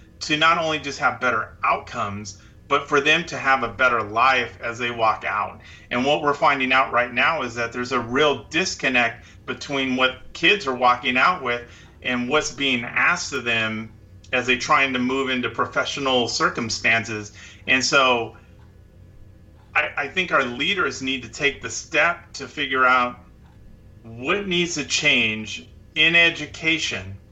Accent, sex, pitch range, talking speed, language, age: American, male, 105-140 Hz, 165 wpm, English, 30-49